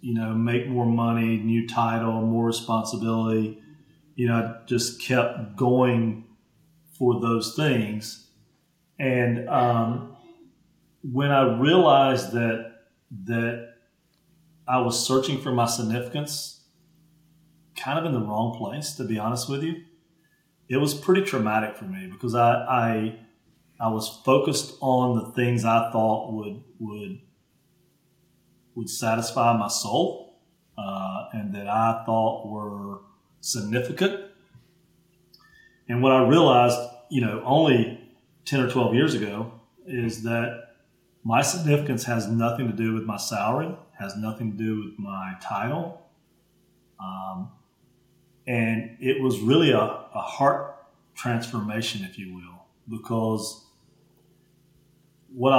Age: 40-59